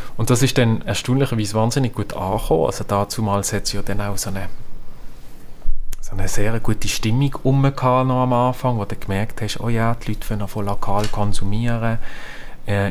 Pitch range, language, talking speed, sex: 100-115 Hz, German, 175 wpm, male